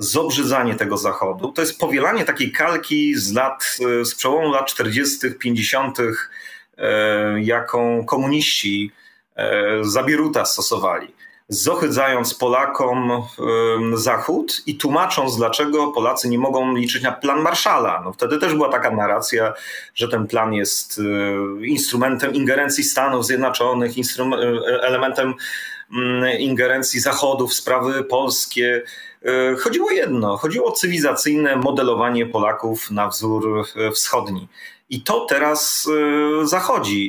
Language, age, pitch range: Polish, 30-49, 115-150 Hz